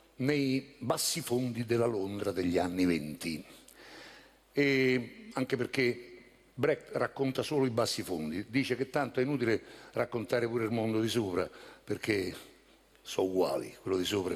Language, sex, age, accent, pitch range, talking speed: Italian, male, 60-79, native, 105-135 Hz, 140 wpm